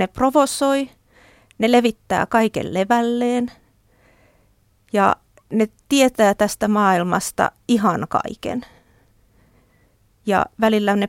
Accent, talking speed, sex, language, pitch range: native, 85 wpm, female, Finnish, 175-240 Hz